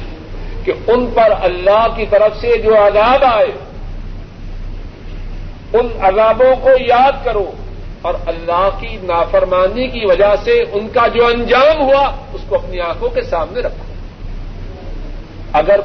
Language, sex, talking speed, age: Urdu, male, 135 wpm, 50-69